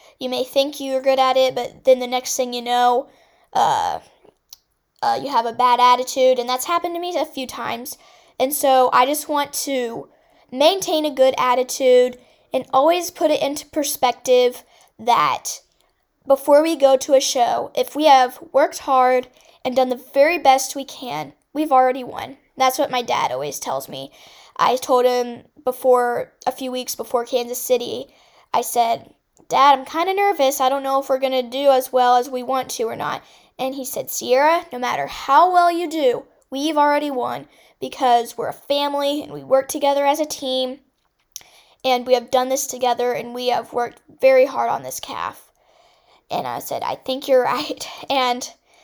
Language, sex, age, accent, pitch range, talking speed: English, female, 10-29, American, 250-300 Hz, 190 wpm